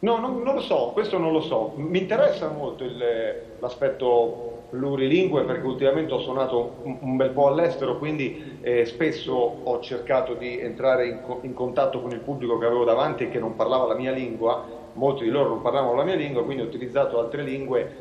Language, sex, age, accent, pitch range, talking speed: Italian, male, 40-59, native, 125-165 Hz, 205 wpm